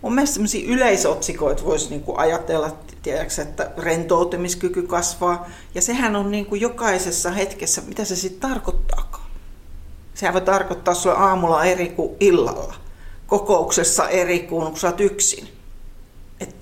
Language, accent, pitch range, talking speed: Finnish, native, 165-210 Hz, 120 wpm